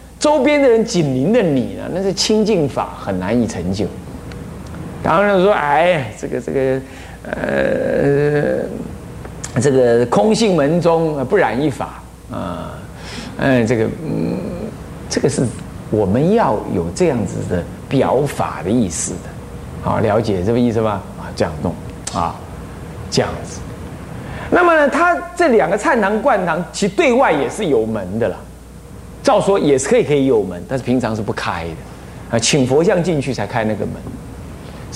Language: Chinese